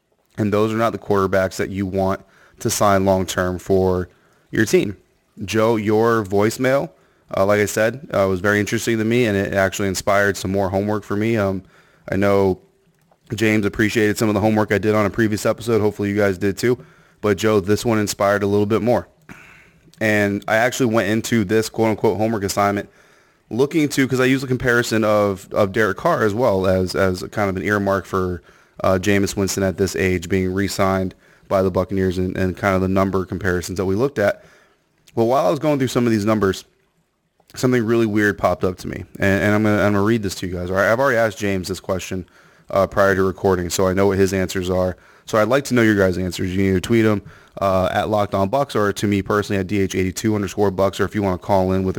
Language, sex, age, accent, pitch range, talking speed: English, male, 30-49, American, 95-110 Hz, 225 wpm